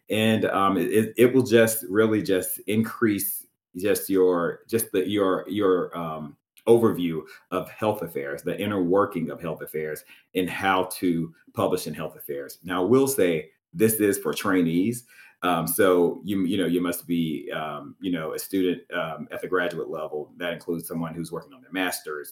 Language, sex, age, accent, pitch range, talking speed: English, male, 30-49, American, 85-110 Hz, 180 wpm